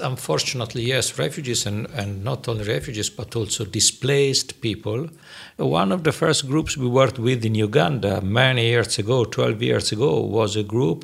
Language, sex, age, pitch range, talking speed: English, male, 60-79, 105-130 Hz, 170 wpm